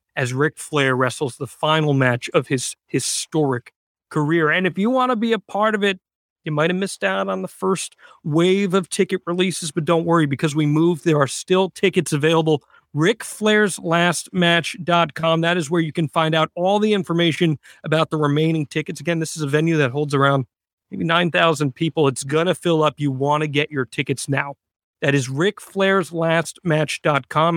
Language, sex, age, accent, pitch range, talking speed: English, male, 40-59, American, 140-170 Hz, 185 wpm